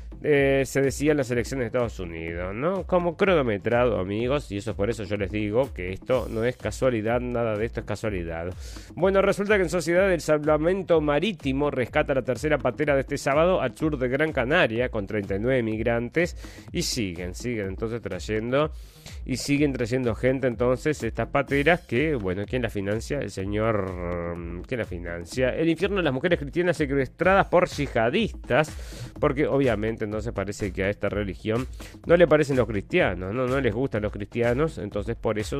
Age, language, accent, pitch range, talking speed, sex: 30-49, Spanish, Argentinian, 105-140 Hz, 180 wpm, male